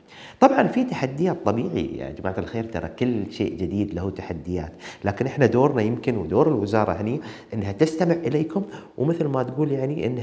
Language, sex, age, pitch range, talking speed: Arabic, male, 40-59, 95-130 Hz, 165 wpm